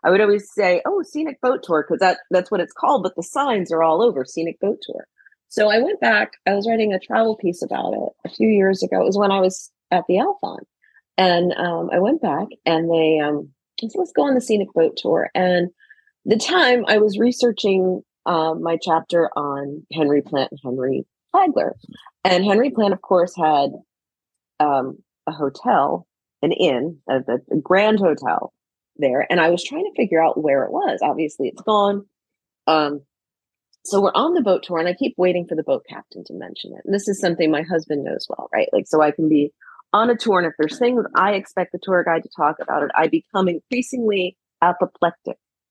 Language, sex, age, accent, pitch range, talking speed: English, female, 30-49, American, 160-210 Hz, 210 wpm